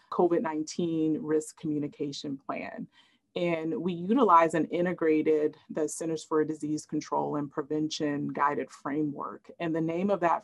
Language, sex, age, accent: English, female, 30-49, American